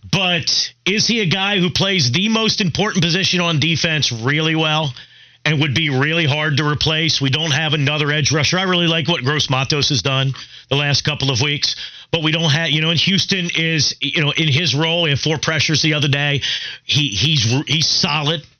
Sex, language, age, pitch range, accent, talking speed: male, English, 40-59, 145-205 Hz, American, 215 wpm